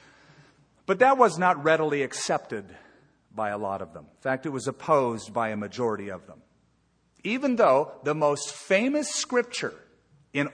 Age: 50-69